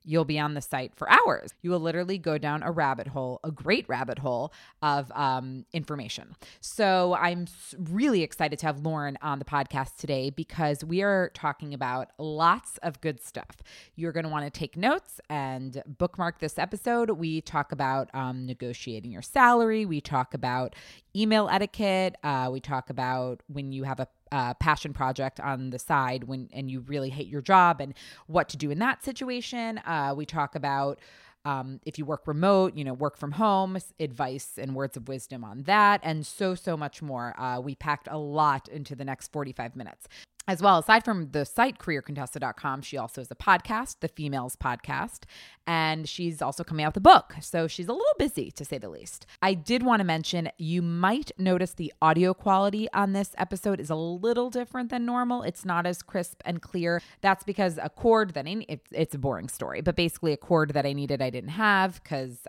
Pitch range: 135-185 Hz